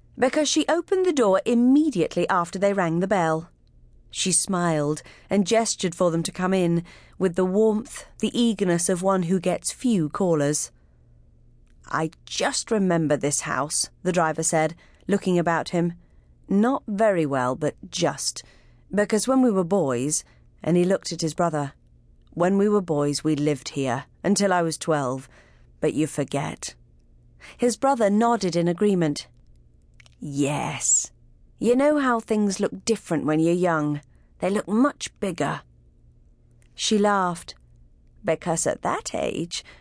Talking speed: 145 wpm